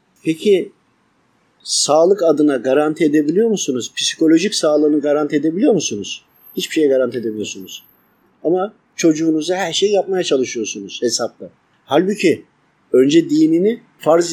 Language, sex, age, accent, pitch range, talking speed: Turkish, male, 50-69, native, 145-195 Hz, 110 wpm